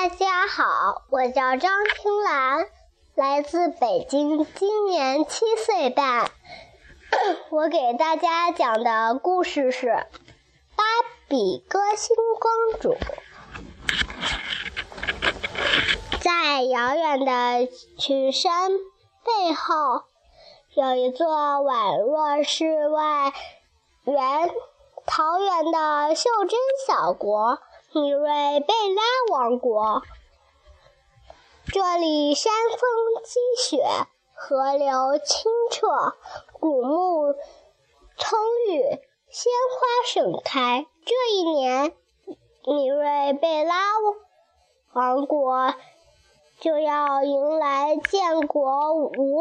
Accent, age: native, 10-29